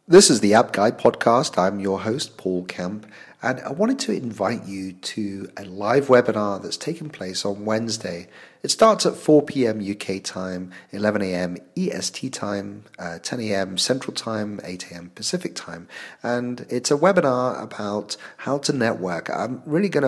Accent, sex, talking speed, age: British, male, 165 wpm, 40-59